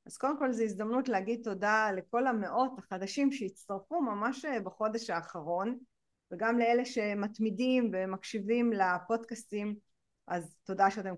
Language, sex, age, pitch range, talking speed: Hebrew, female, 30-49, 195-245 Hz, 120 wpm